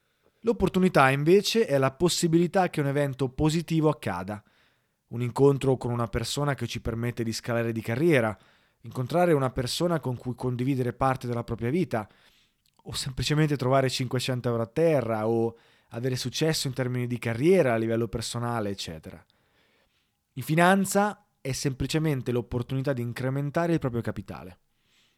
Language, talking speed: Italian, 145 wpm